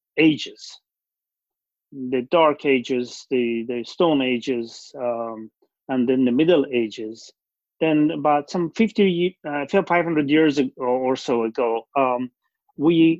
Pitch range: 125-150 Hz